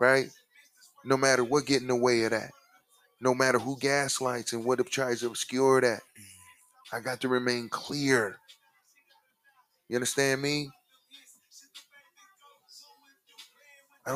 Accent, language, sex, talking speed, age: American, English, male, 125 wpm, 30-49